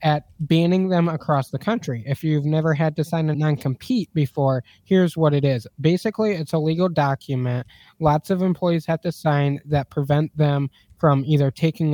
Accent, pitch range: American, 145-175 Hz